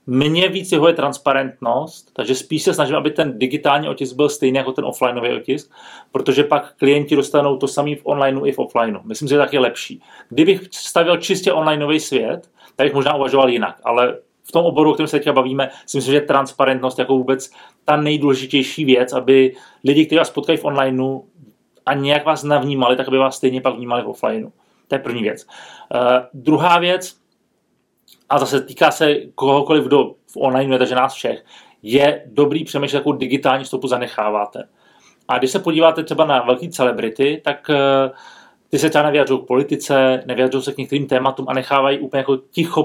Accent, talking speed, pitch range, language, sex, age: native, 185 wpm, 130-150 Hz, Czech, male, 30-49